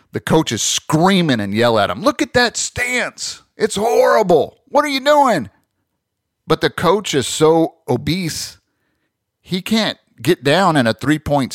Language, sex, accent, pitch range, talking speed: English, male, American, 110-140 Hz, 160 wpm